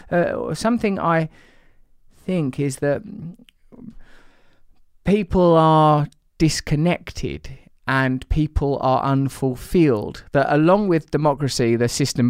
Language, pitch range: English, 120-145 Hz